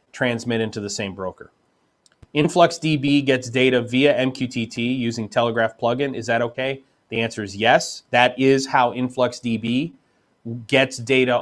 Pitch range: 120-140 Hz